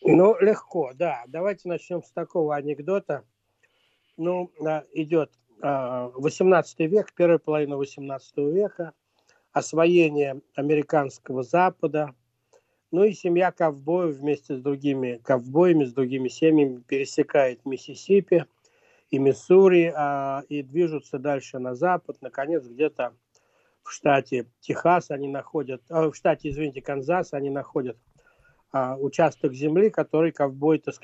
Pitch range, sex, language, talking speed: 140-175 Hz, male, Russian, 115 wpm